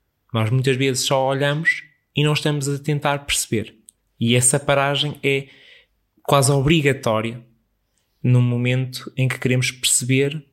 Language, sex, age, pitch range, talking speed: Portuguese, male, 20-39, 110-135 Hz, 130 wpm